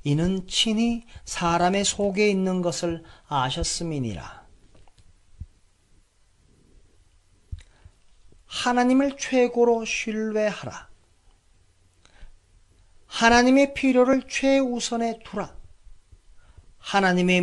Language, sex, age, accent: Korean, male, 40-59, native